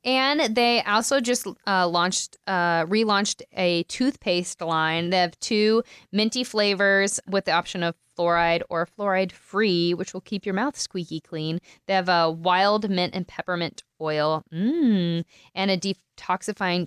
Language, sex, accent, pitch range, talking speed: English, female, American, 175-210 Hz, 150 wpm